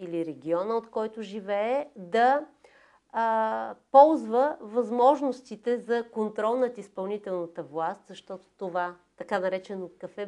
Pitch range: 190-250 Hz